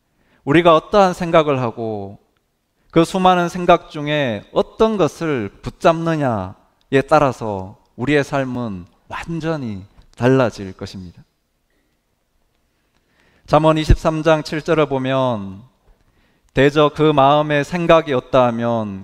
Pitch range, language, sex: 105-160 Hz, Korean, male